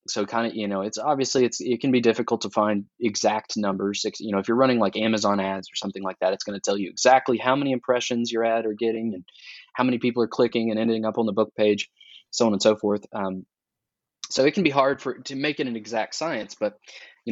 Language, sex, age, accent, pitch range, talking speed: English, male, 20-39, American, 100-125 Hz, 255 wpm